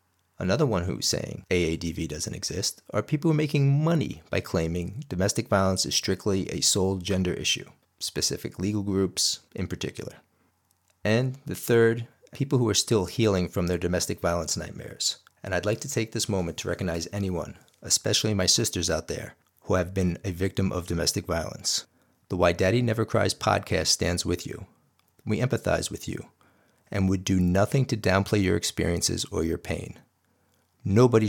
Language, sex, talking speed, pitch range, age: English, male, 170 wpm, 90-115 Hz, 40-59